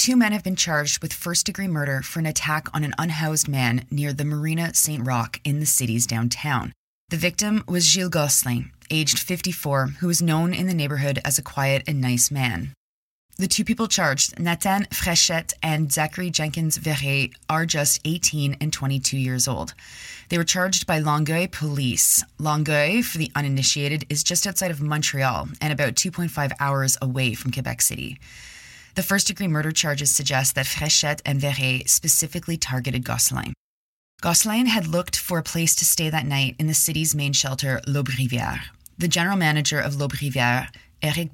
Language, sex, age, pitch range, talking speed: English, female, 20-39, 135-170 Hz, 170 wpm